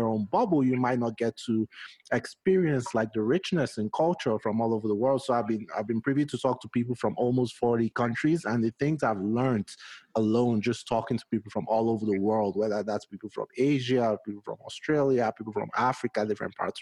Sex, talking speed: male, 215 wpm